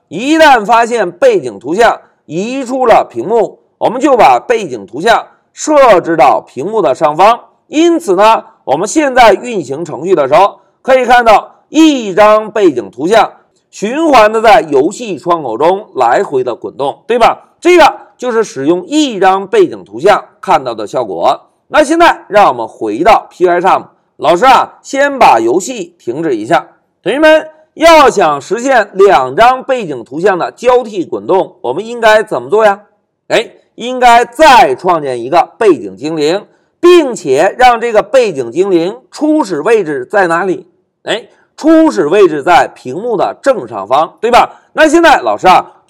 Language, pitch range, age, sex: Chinese, 225-355 Hz, 50-69, male